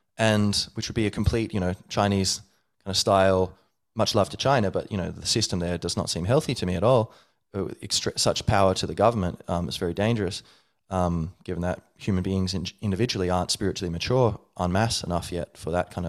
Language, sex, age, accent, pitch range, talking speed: English, male, 20-39, Australian, 95-115 Hz, 215 wpm